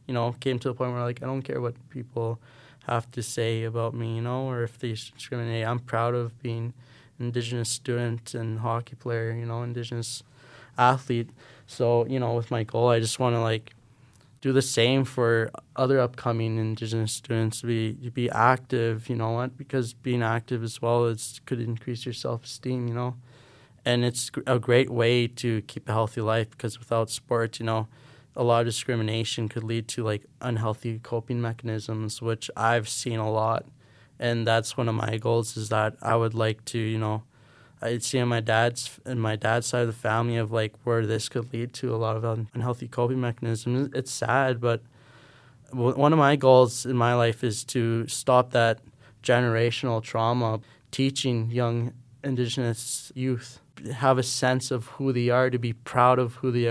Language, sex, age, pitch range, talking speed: English, male, 20-39, 115-125 Hz, 190 wpm